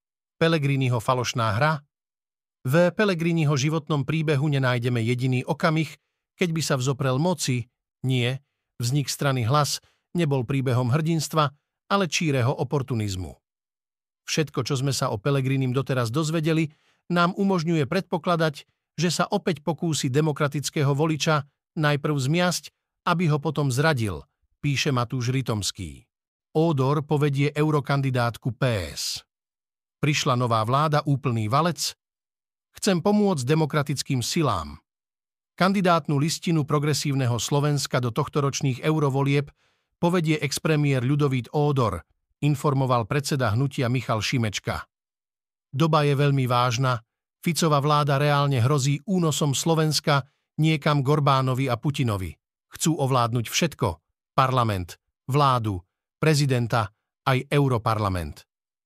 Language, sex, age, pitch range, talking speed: Slovak, male, 50-69, 125-155 Hz, 105 wpm